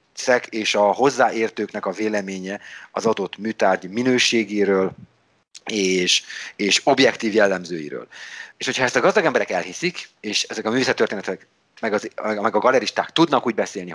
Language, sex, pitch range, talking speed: Hungarian, male, 105-150 Hz, 135 wpm